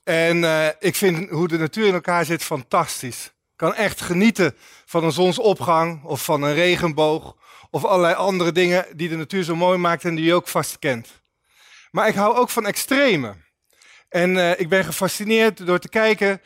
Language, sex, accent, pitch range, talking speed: Dutch, male, Dutch, 165-210 Hz, 190 wpm